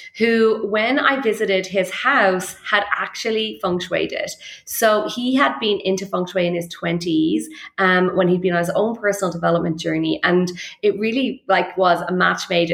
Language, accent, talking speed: English, Irish, 185 wpm